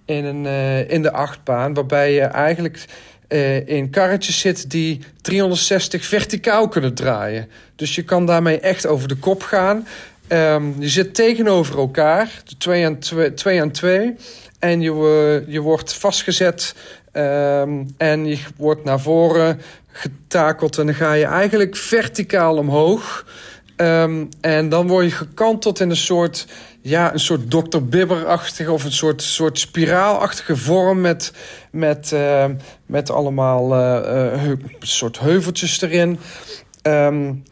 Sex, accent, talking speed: male, Dutch, 140 wpm